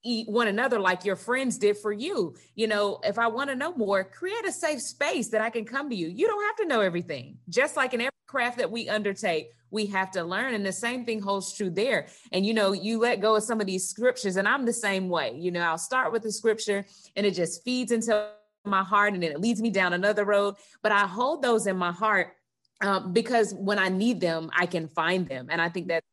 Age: 30-49